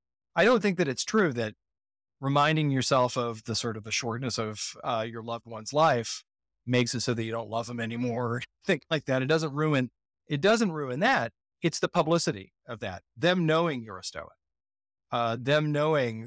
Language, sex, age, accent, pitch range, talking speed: English, male, 30-49, American, 110-145 Hz, 195 wpm